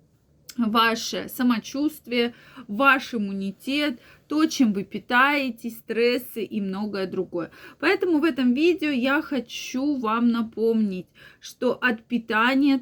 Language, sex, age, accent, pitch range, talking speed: Russian, female, 20-39, native, 215-275 Hz, 110 wpm